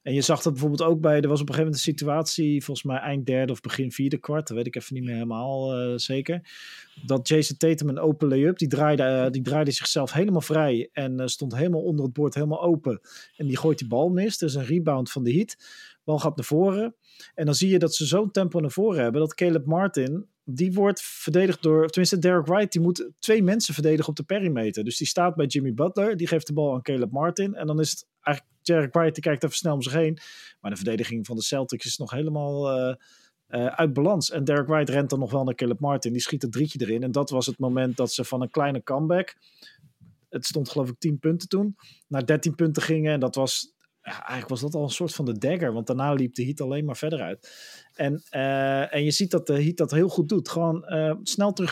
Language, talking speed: Dutch, 250 wpm